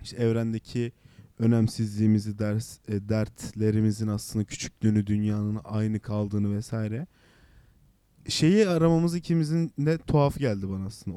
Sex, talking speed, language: male, 105 wpm, Turkish